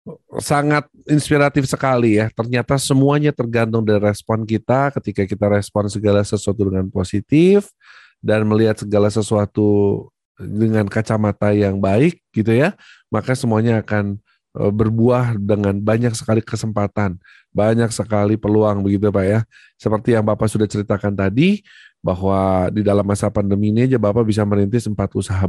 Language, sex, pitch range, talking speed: Indonesian, male, 100-125 Hz, 140 wpm